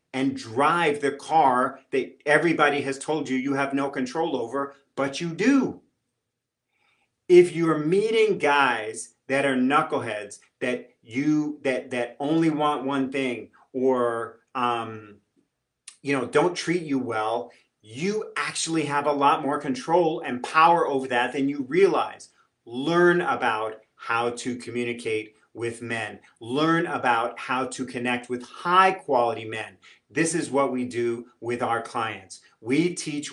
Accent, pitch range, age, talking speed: American, 125-155 Hz, 40-59, 145 wpm